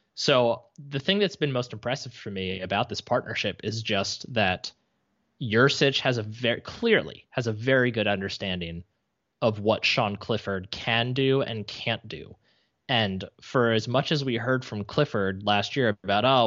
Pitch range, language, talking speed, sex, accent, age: 105-130 Hz, English, 170 wpm, male, American, 20-39